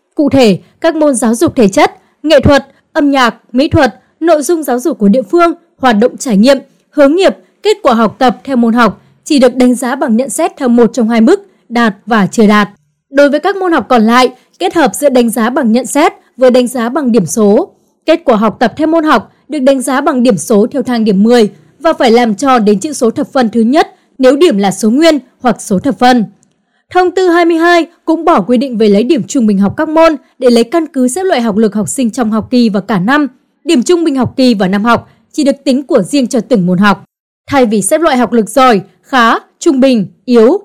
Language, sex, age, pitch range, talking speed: Vietnamese, female, 20-39, 225-300 Hz, 245 wpm